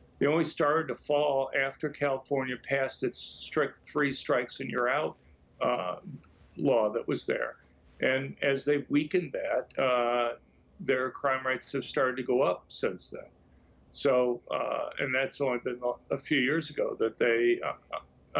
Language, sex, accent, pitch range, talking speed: English, male, American, 120-145 Hz, 145 wpm